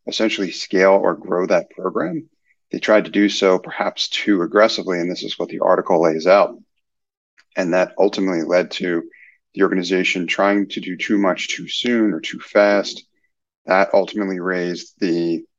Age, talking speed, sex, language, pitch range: 30-49, 165 wpm, male, English, 85-100 Hz